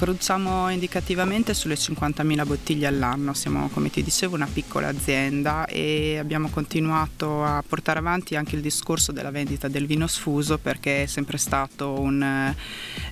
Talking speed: 150 wpm